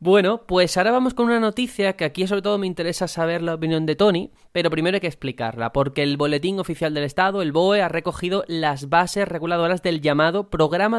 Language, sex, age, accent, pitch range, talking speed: Spanish, male, 20-39, Spanish, 155-205 Hz, 215 wpm